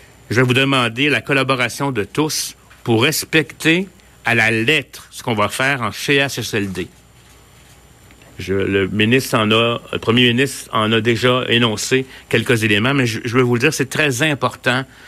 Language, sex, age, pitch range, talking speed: French, male, 60-79, 110-140 Hz, 170 wpm